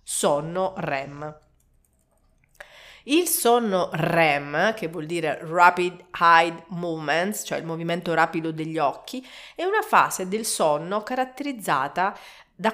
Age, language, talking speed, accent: 40-59, Italian, 115 wpm, native